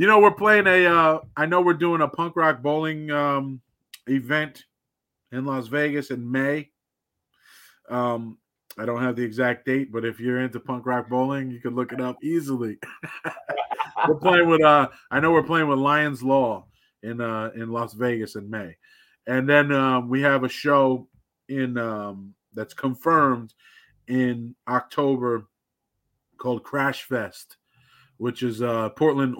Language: English